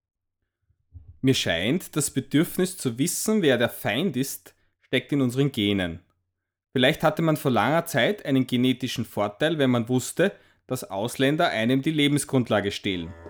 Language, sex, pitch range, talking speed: English, male, 100-150 Hz, 145 wpm